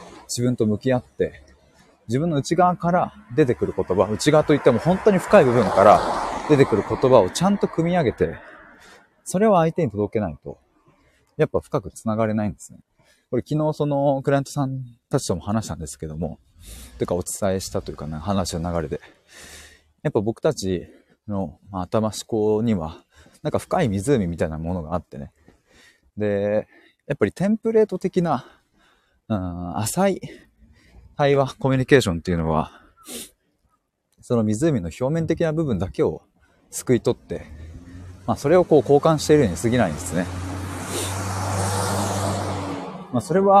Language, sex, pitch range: Japanese, male, 90-145 Hz